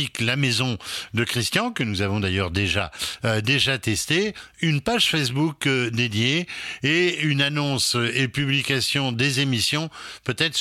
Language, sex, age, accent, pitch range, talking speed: French, male, 60-79, French, 110-145 Hz, 140 wpm